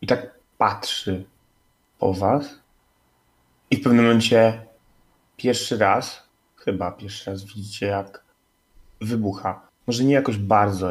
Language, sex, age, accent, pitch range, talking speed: Polish, male, 30-49, native, 95-120 Hz, 115 wpm